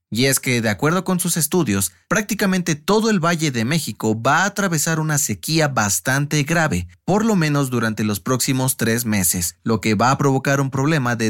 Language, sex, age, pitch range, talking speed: Spanish, male, 30-49, 115-165 Hz, 195 wpm